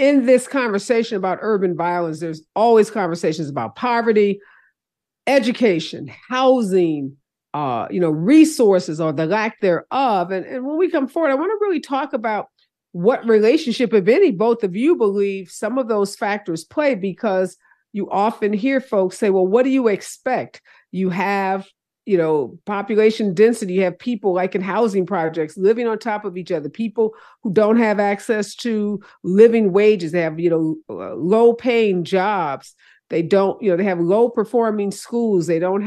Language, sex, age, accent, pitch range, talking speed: English, female, 50-69, American, 180-230 Hz, 170 wpm